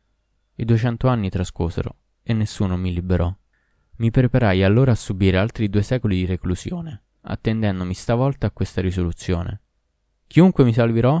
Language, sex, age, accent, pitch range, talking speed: Italian, male, 20-39, native, 95-130 Hz, 140 wpm